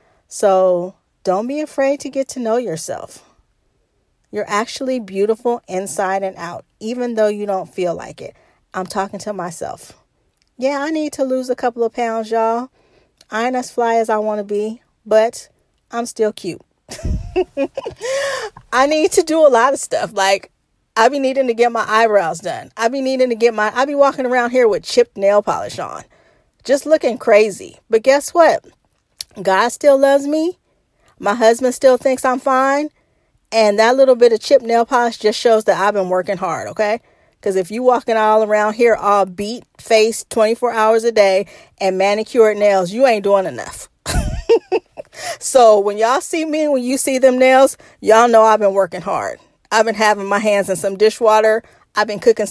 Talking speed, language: 185 wpm, English